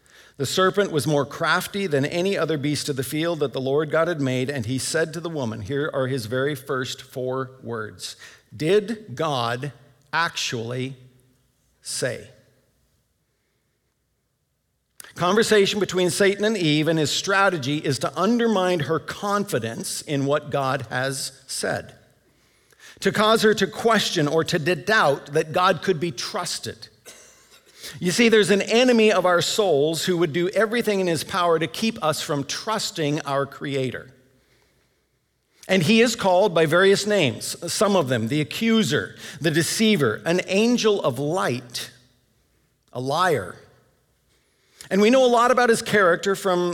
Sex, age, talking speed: male, 50-69, 150 wpm